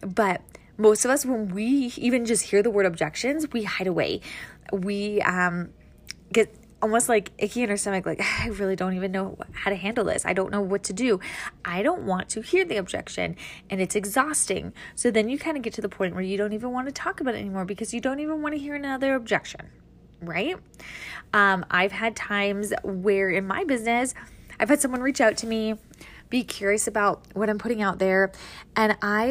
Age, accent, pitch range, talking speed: 10-29, American, 195-250 Hz, 215 wpm